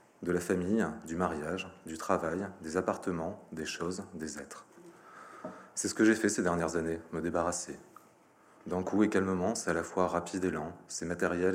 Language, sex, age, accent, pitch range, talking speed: French, male, 30-49, French, 80-95 Hz, 185 wpm